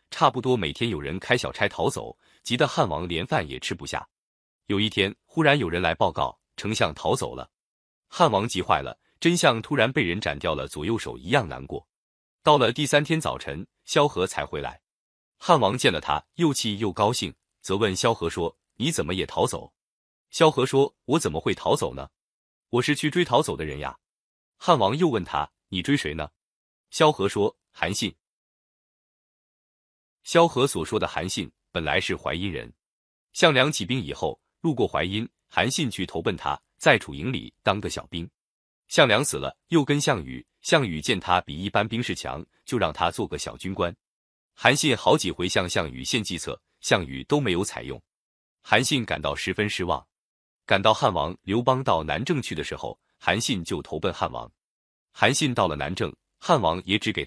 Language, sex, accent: Chinese, male, native